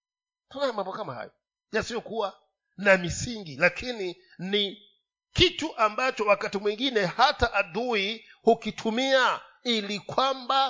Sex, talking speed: male, 105 wpm